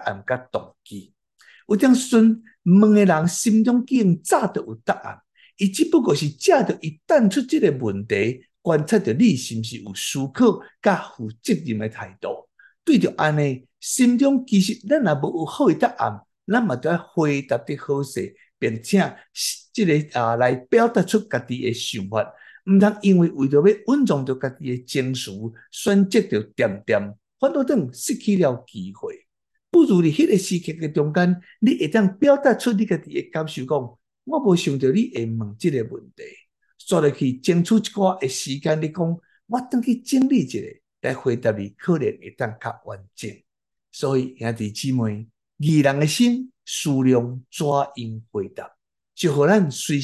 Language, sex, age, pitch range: Chinese, male, 60-79, 125-210 Hz